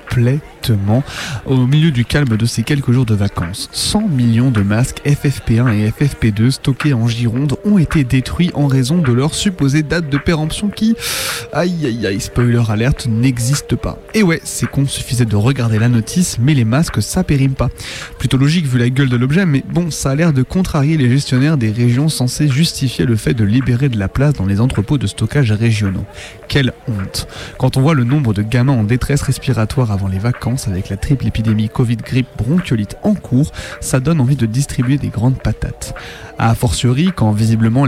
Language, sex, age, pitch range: French, male, 20-39, 115-145 Hz